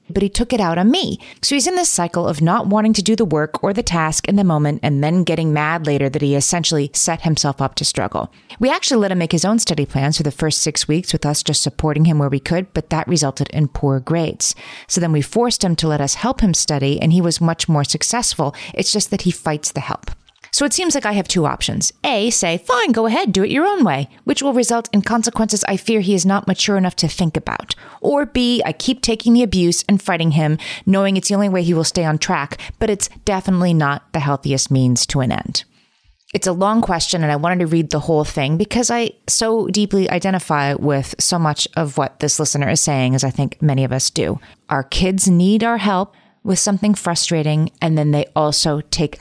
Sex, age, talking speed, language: female, 30-49, 245 wpm, English